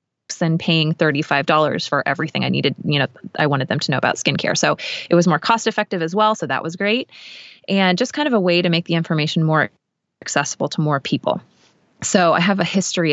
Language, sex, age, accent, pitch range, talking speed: English, female, 20-39, American, 155-185 Hz, 230 wpm